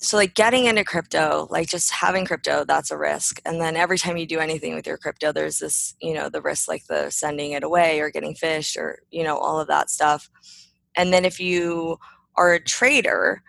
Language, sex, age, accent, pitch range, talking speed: English, female, 20-39, American, 160-195 Hz, 220 wpm